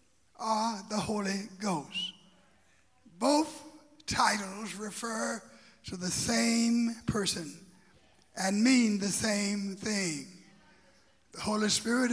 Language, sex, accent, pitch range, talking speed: English, male, American, 195-240 Hz, 95 wpm